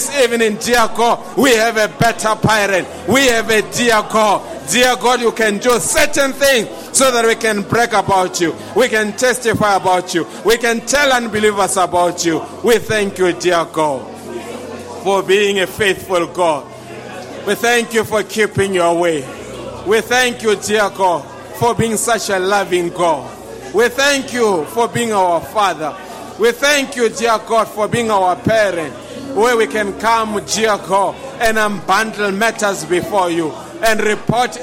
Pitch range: 195-230 Hz